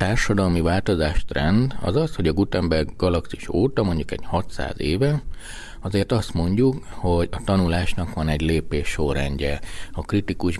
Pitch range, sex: 80-110 Hz, male